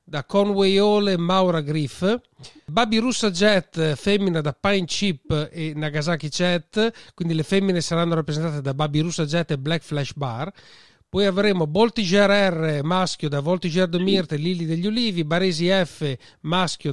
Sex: male